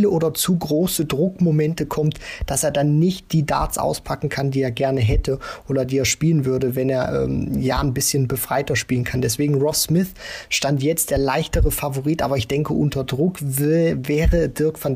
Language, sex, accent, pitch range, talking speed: German, male, German, 130-165 Hz, 190 wpm